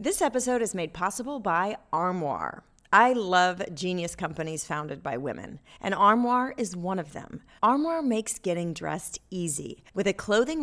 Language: English